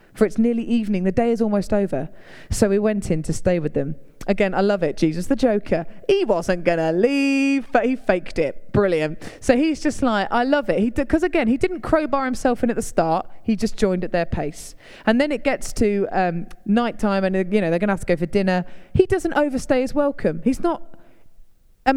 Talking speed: 230 wpm